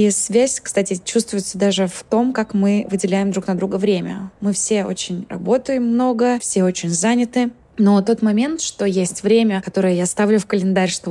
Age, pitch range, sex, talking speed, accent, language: 20-39, 180-205 Hz, female, 185 wpm, native, Russian